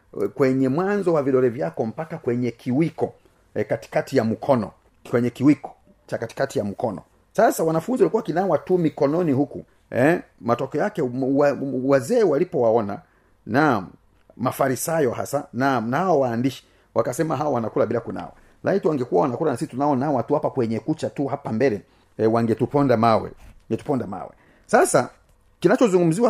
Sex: male